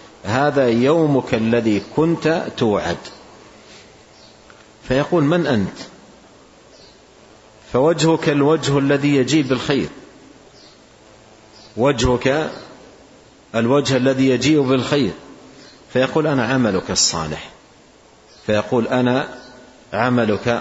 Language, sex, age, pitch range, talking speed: Arabic, male, 50-69, 110-135 Hz, 75 wpm